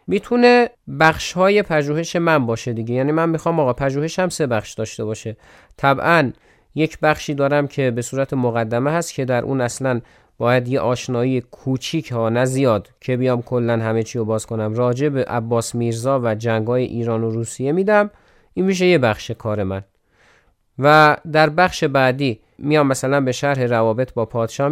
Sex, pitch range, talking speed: male, 115-155 Hz, 170 wpm